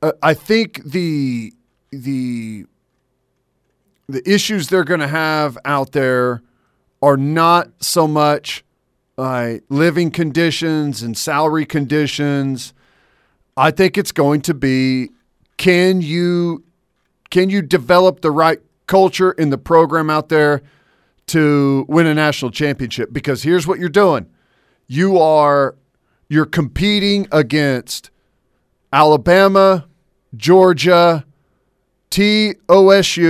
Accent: American